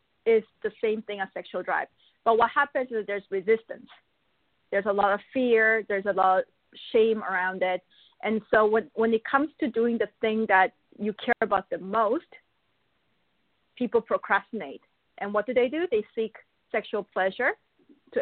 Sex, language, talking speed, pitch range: female, English, 175 wpm, 200-245 Hz